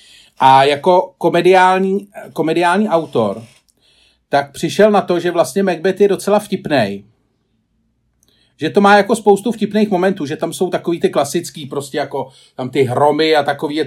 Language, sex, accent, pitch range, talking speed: Czech, male, native, 145-205 Hz, 155 wpm